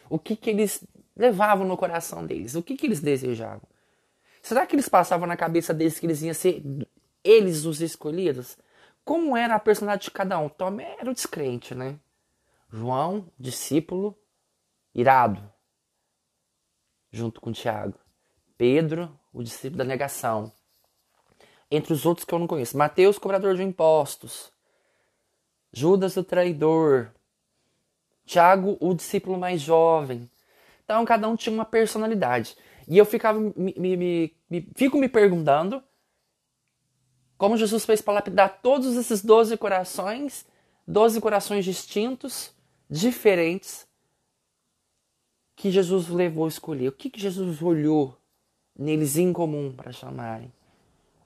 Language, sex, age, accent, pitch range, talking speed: Portuguese, male, 20-39, Brazilian, 140-205 Hz, 130 wpm